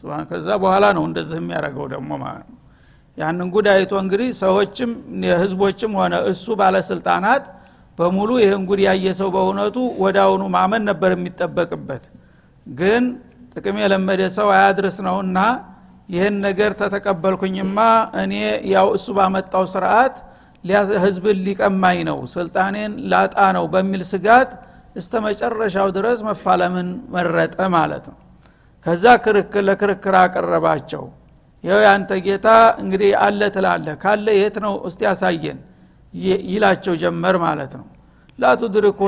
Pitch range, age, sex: 185-210 Hz, 60-79, male